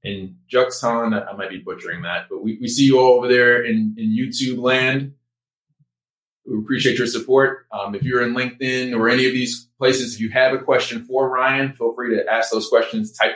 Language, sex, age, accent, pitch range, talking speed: English, male, 20-39, American, 105-130 Hz, 210 wpm